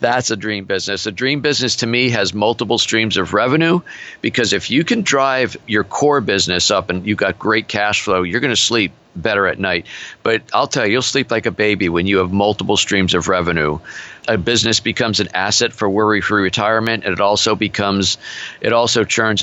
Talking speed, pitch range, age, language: 205 wpm, 95-115 Hz, 50-69, English